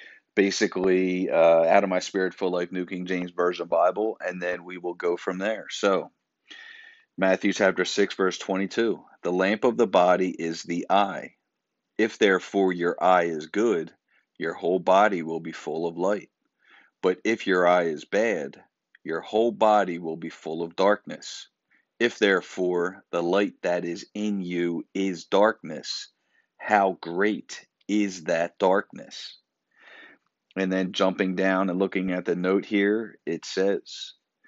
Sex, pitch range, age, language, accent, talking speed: male, 90-105 Hz, 40-59, English, American, 155 wpm